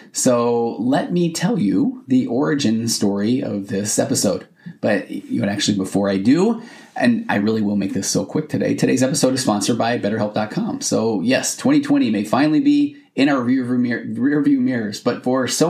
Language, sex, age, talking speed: English, male, 30-49, 175 wpm